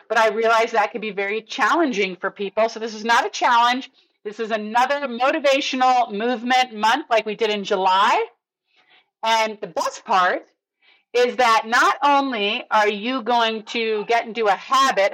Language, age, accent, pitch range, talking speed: English, 40-59, American, 205-265 Hz, 170 wpm